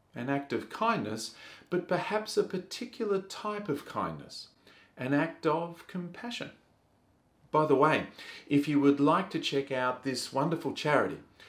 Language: English